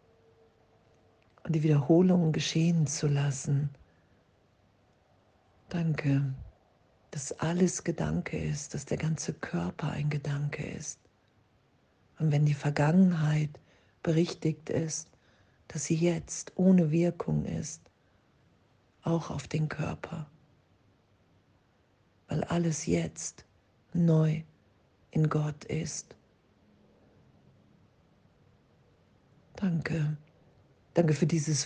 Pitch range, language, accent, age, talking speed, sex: 135-160 Hz, German, German, 50-69, 85 wpm, female